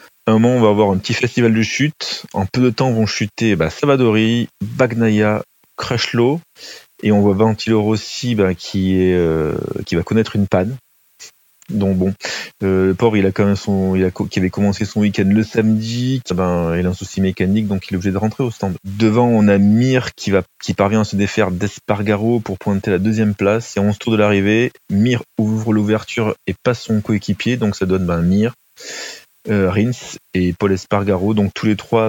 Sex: male